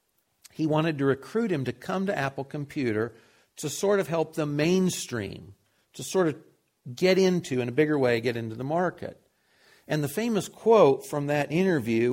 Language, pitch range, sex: English, 115-165 Hz, male